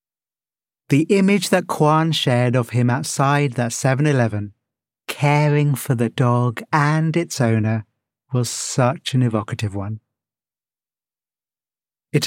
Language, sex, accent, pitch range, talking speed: English, male, British, 115-150 Hz, 110 wpm